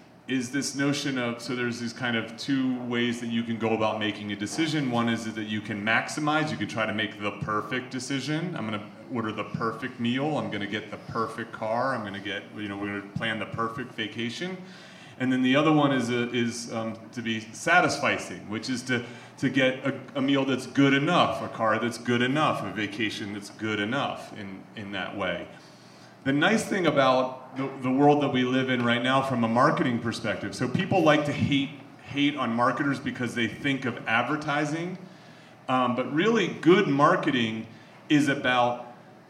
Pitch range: 115-140 Hz